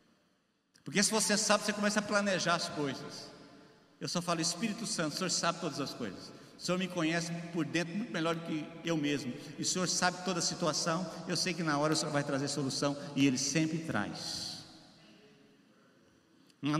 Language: Portuguese